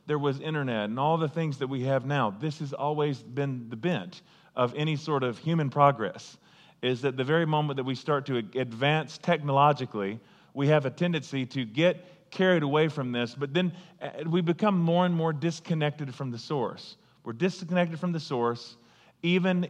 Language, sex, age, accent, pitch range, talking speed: English, male, 40-59, American, 130-170 Hz, 185 wpm